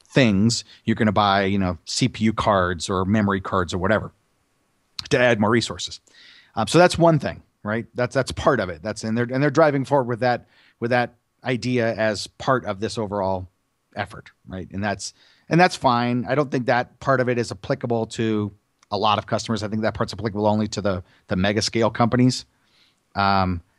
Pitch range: 105-125 Hz